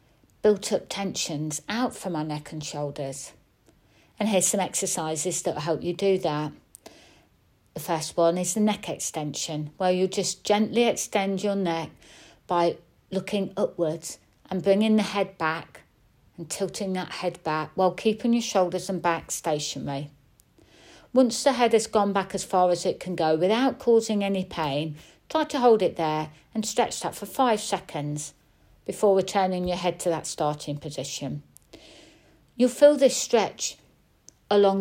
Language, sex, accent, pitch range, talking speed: English, female, British, 160-205 Hz, 160 wpm